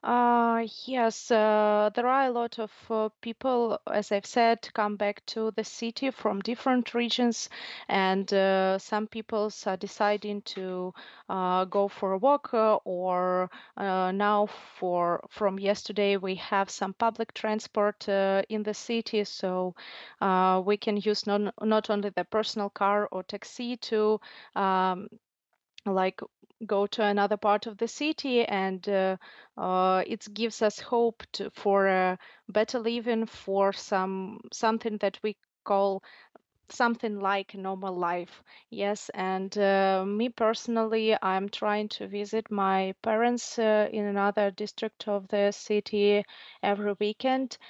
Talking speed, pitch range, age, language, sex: 145 wpm, 195-225 Hz, 30-49, English, female